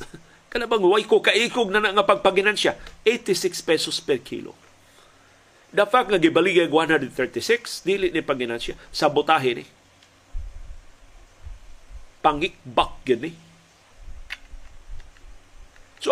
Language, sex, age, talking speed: Filipino, male, 50-69, 95 wpm